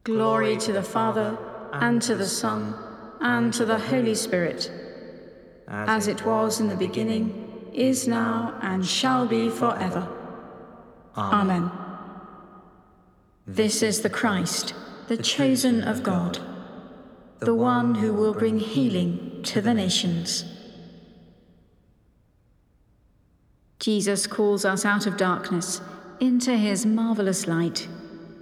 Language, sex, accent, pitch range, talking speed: English, female, British, 180-225 Hz, 110 wpm